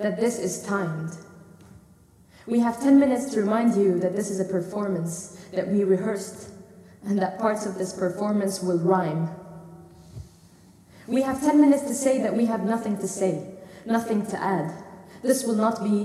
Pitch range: 185-225 Hz